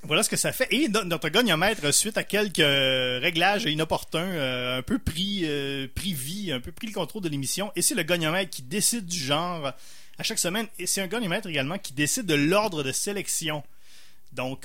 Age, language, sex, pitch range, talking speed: 30-49, French, male, 145-200 Hz, 195 wpm